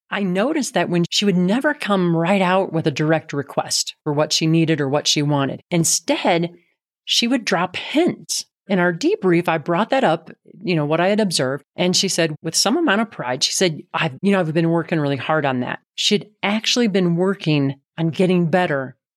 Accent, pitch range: American, 160-205 Hz